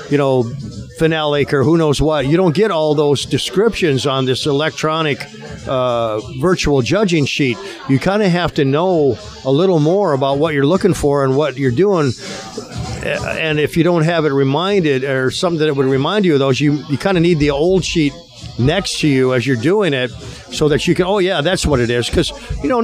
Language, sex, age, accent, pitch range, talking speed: English, male, 50-69, American, 135-170 Hz, 215 wpm